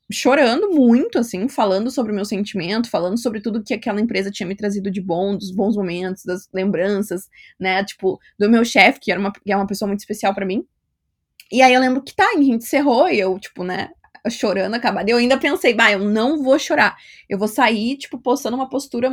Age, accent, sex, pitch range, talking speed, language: 20-39, Brazilian, female, 210-290 Hz, 215 wpm, Portuguese